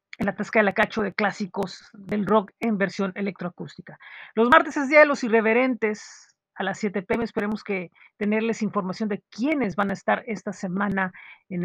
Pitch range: 195-230 Hz